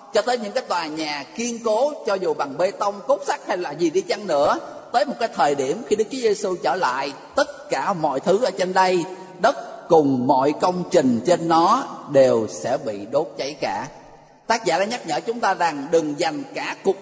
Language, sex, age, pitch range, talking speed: Vietnamese, male, 20-39, 160-235 Hz, 225 wpm